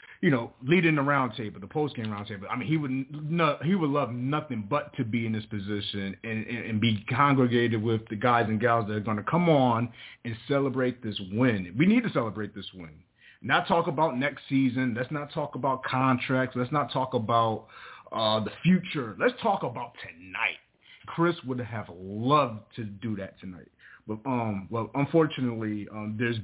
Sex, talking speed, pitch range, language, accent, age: male, 195 wpm, 110-150 Hz, English, American, 30-49